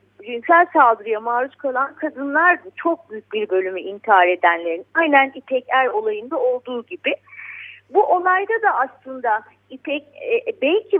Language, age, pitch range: Turkish, 40-59, 240-365 Hz